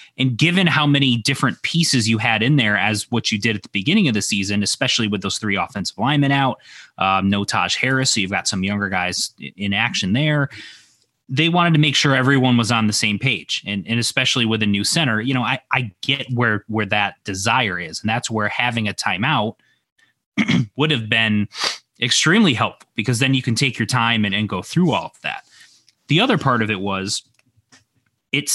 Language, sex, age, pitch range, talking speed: English, male, 20-39, 105-135 Hz, 210 wpm